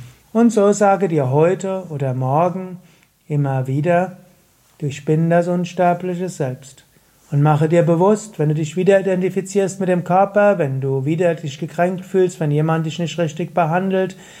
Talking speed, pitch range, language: 160 wpm, 150-185 Hz, German